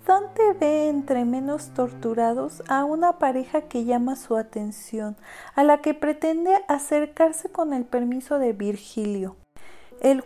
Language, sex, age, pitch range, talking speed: Spanish, female, 40-59, 235-300 Hz, 135 wpm